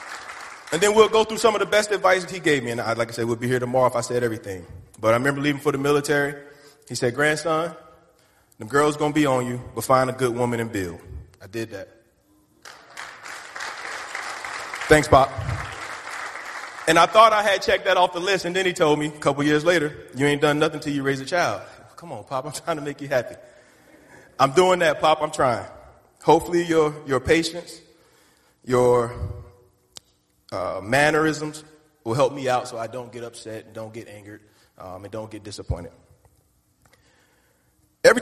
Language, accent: English, American